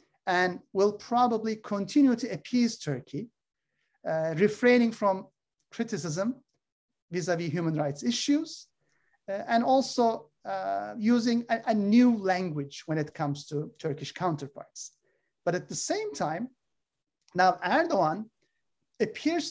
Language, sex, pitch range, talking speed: Turkish, male, 180-250 Hz, 115 wpm